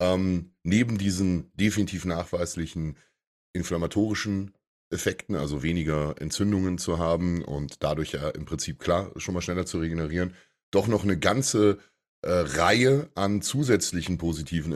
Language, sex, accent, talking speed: English, male, German, 130 wpm